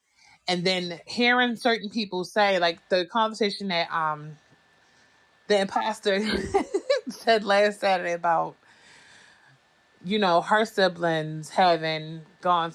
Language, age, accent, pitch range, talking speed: English, 30-49, American, 165-205 Hz, 110 wpm